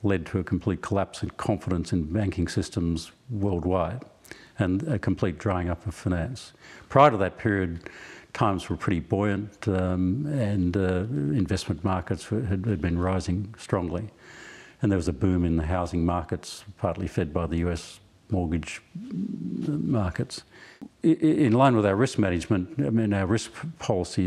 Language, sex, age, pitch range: English, male, 50-69, 90-105 Hz